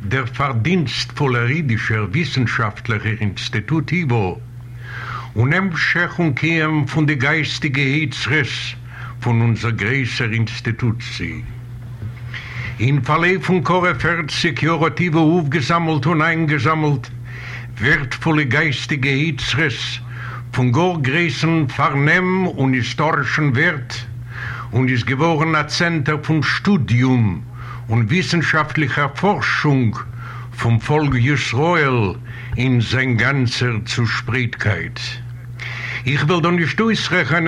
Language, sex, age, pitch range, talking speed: English, male, 70-89, 120-160 Hz, 90 wpm